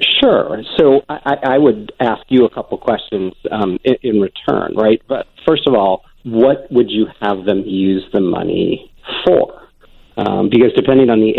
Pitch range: 100-130 Hz